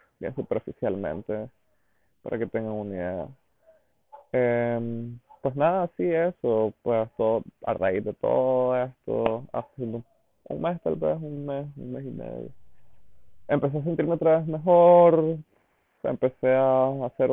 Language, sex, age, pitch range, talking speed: Spanish, male, 20-39, 110-130 Hz, 140 wpm